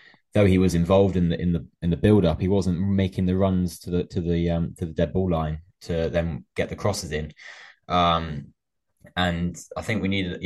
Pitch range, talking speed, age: 85-95 Hz, 220 wpm, 10-29